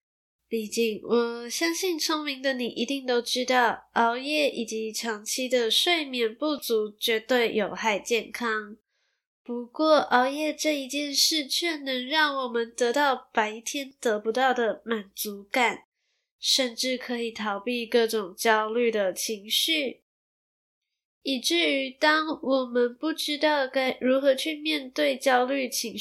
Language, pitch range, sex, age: Chinese, 225-275 Hz, female, 10-29